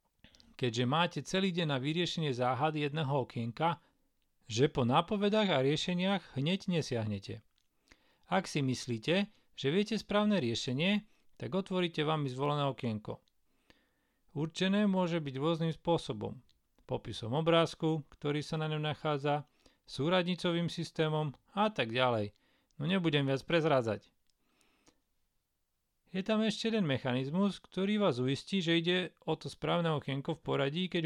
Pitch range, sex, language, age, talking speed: 135-185 Hz, male, Slovak, 40-59, 130 wpm